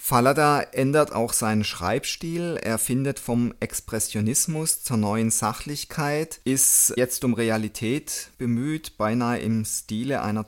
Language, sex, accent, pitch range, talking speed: German, male, German, 110-135 Hz, 120 wpm